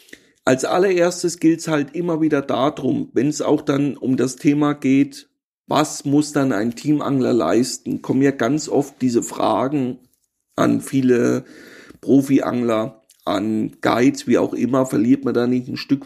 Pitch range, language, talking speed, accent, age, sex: 130-155 Hz, German, 150 wpm, German, 40-59, male